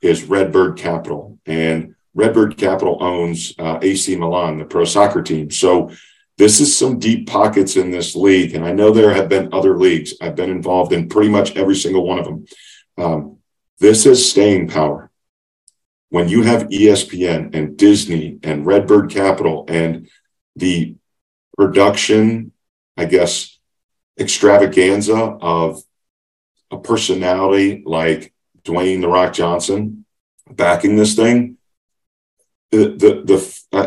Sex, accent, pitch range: male, American, 85-110 Hz